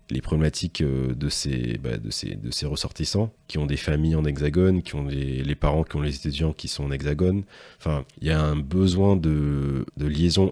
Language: French